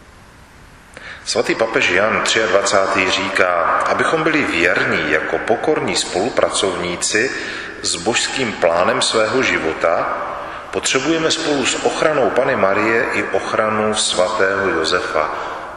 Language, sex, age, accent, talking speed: Czech, male, 40-59, native, 100 wpm